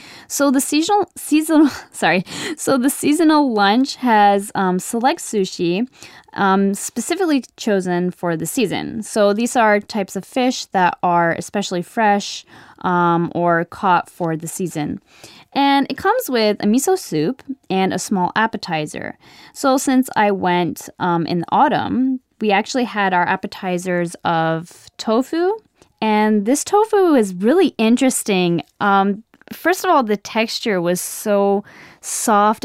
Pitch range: 185-265 Hz